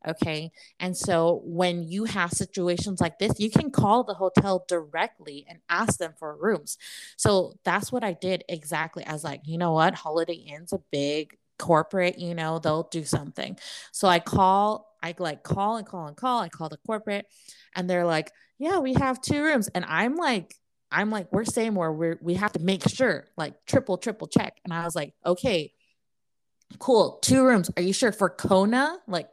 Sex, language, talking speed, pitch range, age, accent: female, English, 195 wpm, 175-240 Hz, 20-39, American